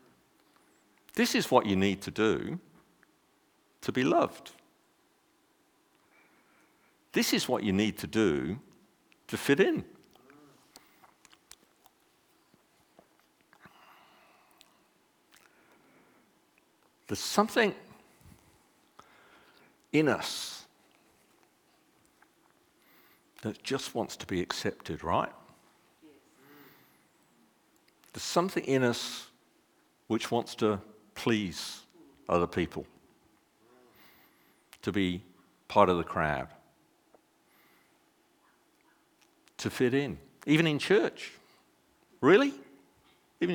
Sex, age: male, 60-79